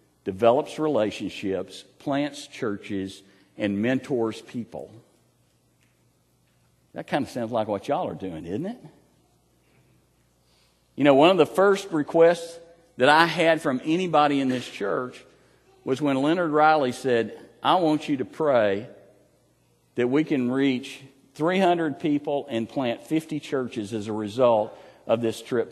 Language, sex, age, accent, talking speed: English, male, 50-69, American, 140 wpm